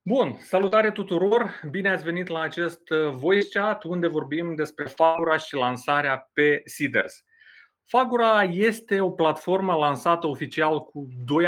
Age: 30-49